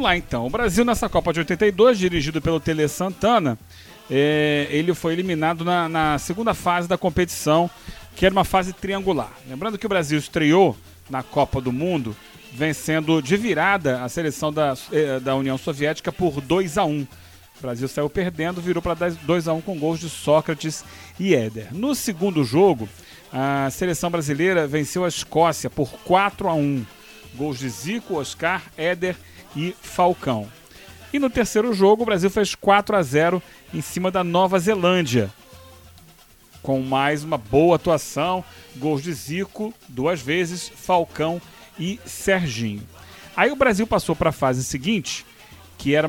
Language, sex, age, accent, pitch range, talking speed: Portuguese, male, 40-59, Brazilian, 145-185 Hz, 150 wpm